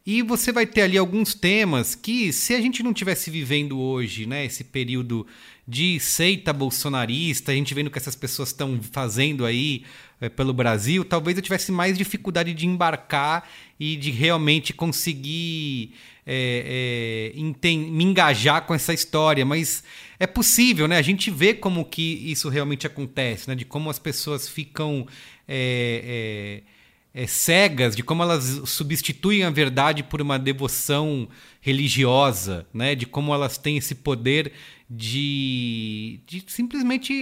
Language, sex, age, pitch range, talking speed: English, male, 30-49, 130-170 Hz, 150 wpm